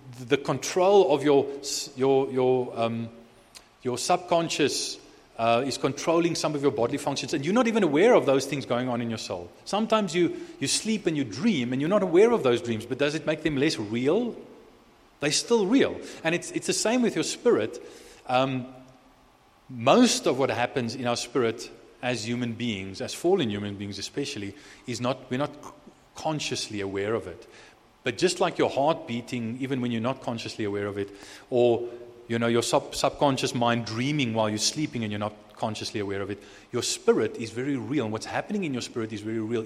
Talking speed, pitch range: 200 wpm, 115-150 Hz